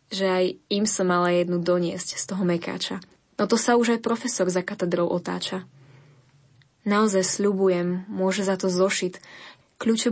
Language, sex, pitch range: Slovak, female, 180-205 Hz